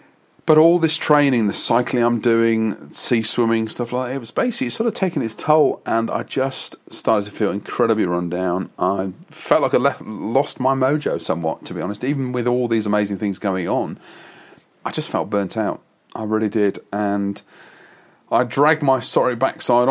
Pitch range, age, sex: 100-130 Hz, 30-49, male